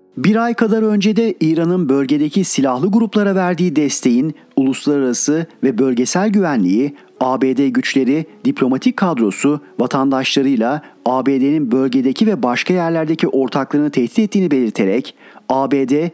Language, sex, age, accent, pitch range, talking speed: Turkish, male, 40-59, native, 135-180 Hz, 110 wpm